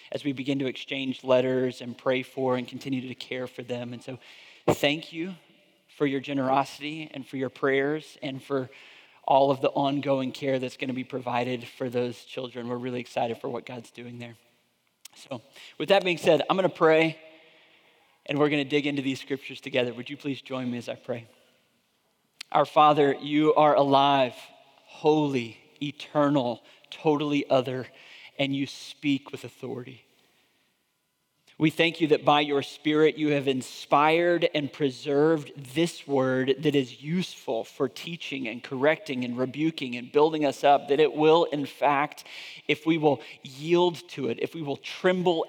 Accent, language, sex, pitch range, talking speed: American, English, male, 130-150 Hz, 175 wpm